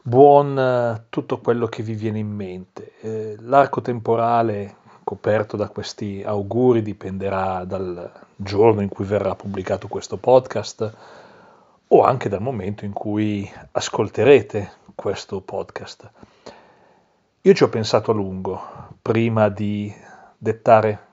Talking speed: 115 wpm